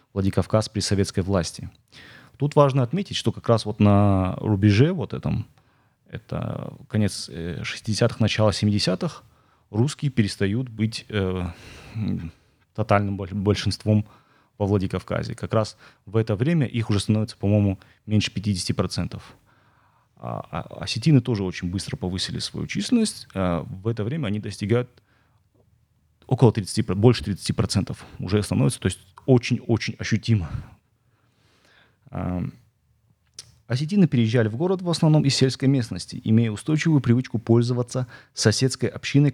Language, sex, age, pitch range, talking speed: Russian, male, 30-49, 100-125 Hz, 120 wpm